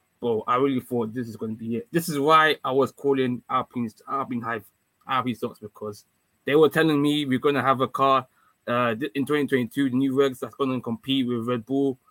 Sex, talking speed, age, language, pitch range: male, 225 wpm, 20-39, English, 120-145 Hz